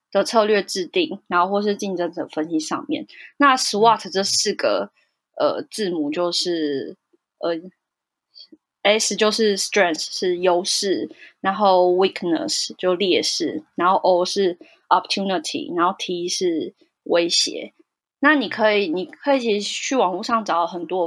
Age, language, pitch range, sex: 20-39, Chinese, 180-260 Hz, female